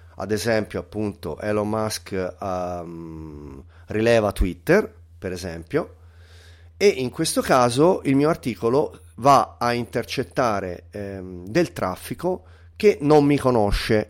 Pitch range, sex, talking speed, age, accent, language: 90-130 Hz, male, 115 wpm, 30-49, native, Italian